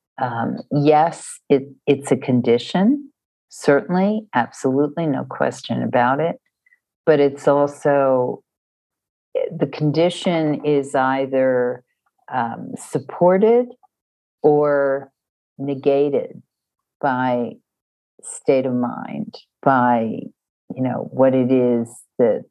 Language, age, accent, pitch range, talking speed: English, 50-69, American, 130-155 Hz, 90 wpm